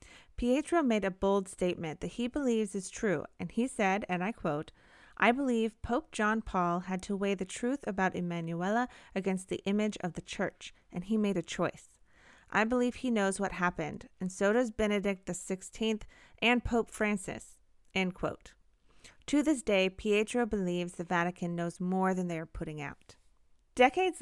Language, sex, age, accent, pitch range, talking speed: English, female, 30-49, American, 180-230 Hz, 175 wpm